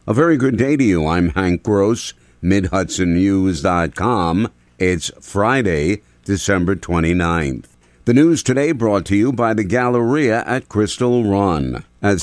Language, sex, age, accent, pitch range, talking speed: English, male, 60-79, American, 85-105 Hz, 130 wpm